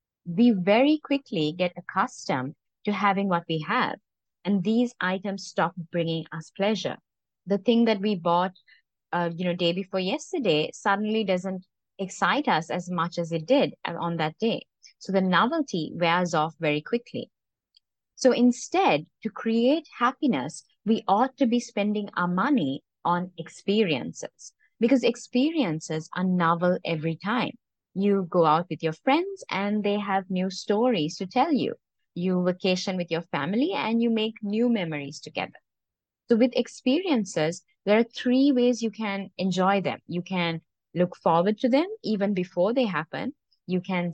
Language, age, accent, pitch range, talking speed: English, 30-49, Indian, 175-240 Hz, 155 wpm